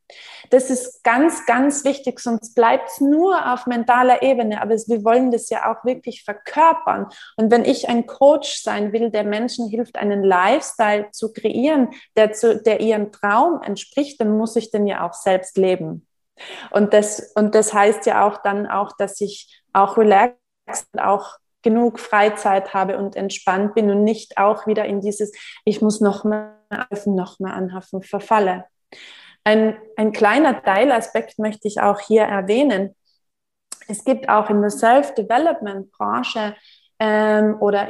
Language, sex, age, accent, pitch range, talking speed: German, female, 20-39, German, 200-240 Hz, 160 wpm